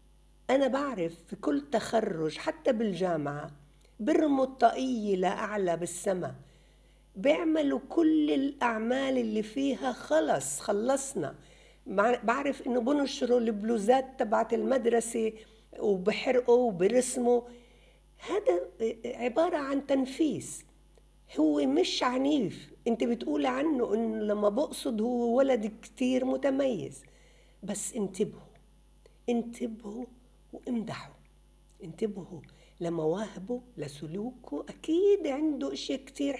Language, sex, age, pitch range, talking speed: Arabic, female, 50-69, 185-255 Hz, 90 wpm